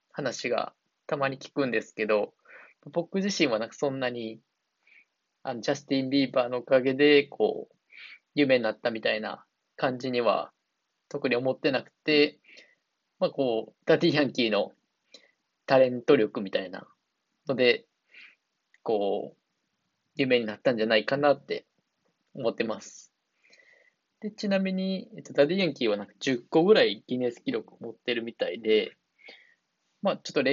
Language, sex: Japanese, male